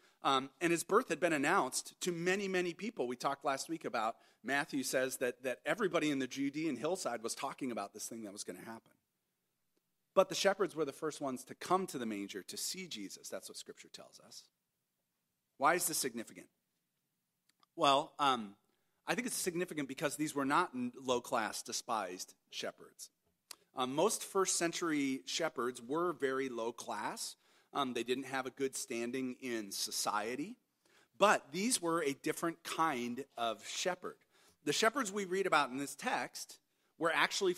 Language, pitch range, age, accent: English, 135-180 Hz, 40-59, American